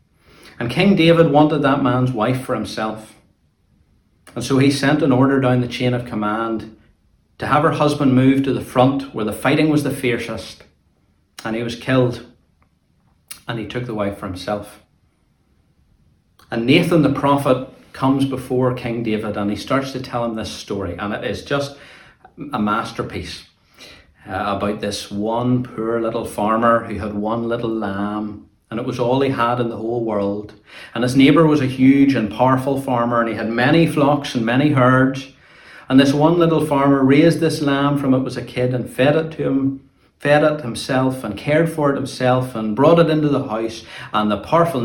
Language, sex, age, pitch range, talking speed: English, male, 40-59, 105-135 Hz, 185 wpm